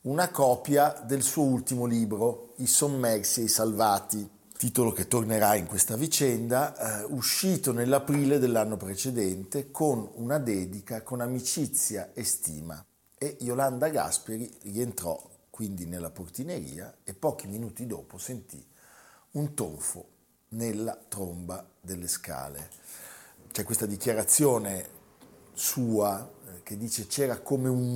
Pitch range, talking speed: 95-125 Hz, 120 wpm